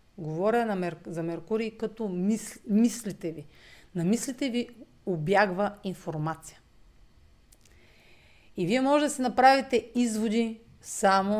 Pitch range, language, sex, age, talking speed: 165-220 Hz, Bulgarian, female, 40-59, 100 wpm